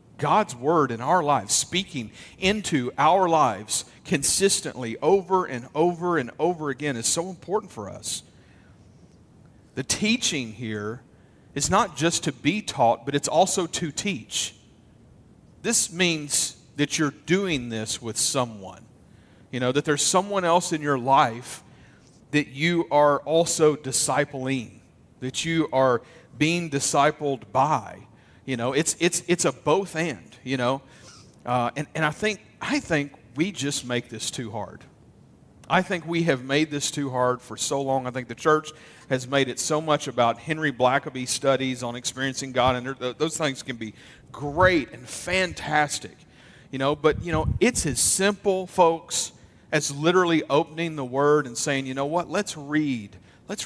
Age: 40-59